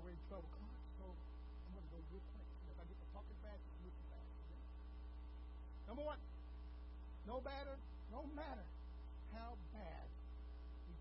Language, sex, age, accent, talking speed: English, male, 60-79, American, 130 wpm